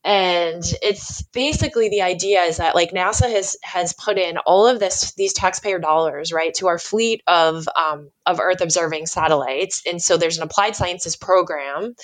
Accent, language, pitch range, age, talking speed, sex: American, English, 160-210 Hz, 20-39, 180 wpm, female